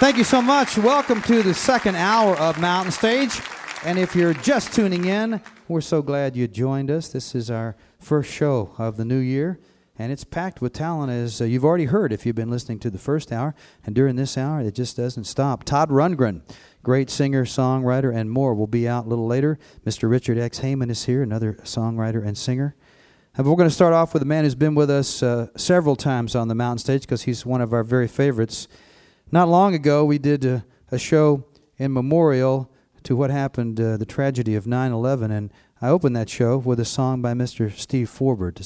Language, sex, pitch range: English, male, 115-150 Hz